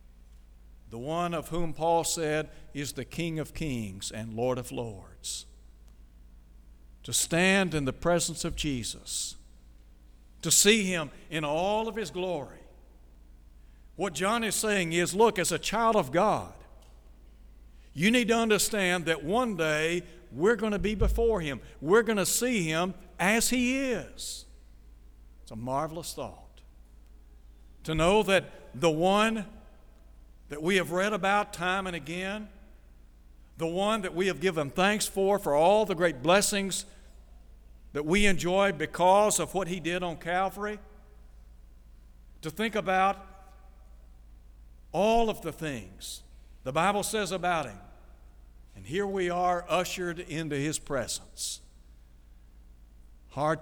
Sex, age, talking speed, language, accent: male, 60-79, 140 wpm, English, American